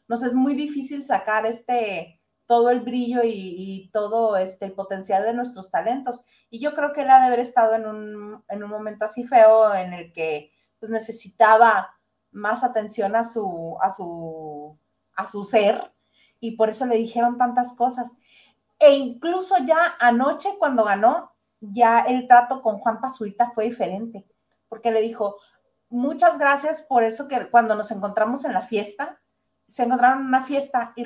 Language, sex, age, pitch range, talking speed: Spanish, female, 40-59, 210-255 Hz, 170 wpm